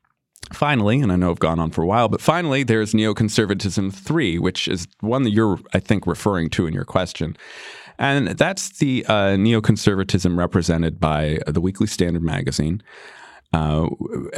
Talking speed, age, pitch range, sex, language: 165 wpm, 30-49, 85-110 Hz, male, English